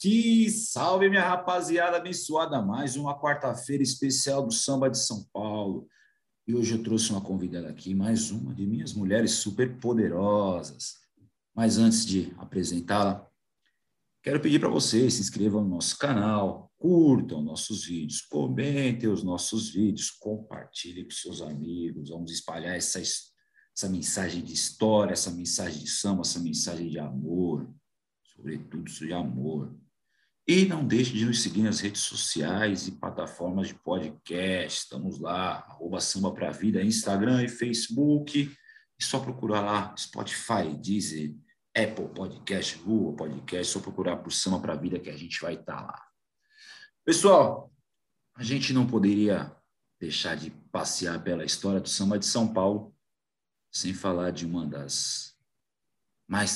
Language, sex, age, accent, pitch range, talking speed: Portuguese, male, 50-69, Brazilian, 90-130 Hz, 145 wpm